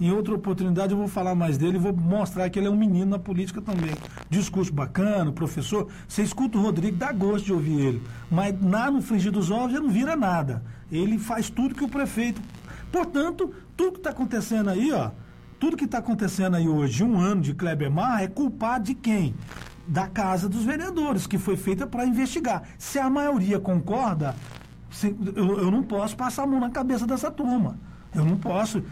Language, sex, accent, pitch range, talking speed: Portuguese, male, Brazilian, 185-255 Hz, 195 wpm